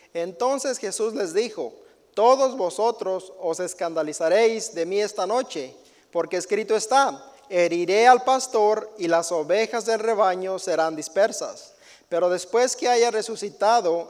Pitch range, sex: 185-235 Hz, male